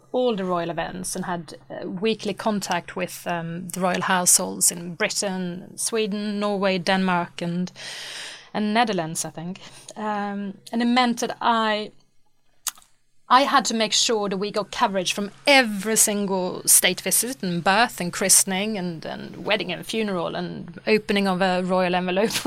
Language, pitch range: English, 185-230 Hz